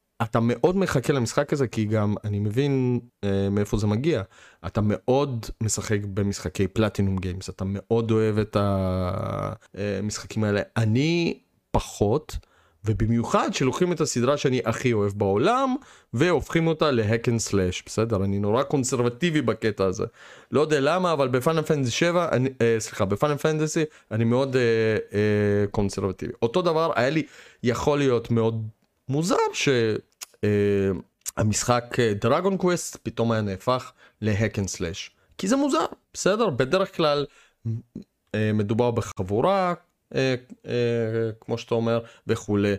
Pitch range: 105-135 Hz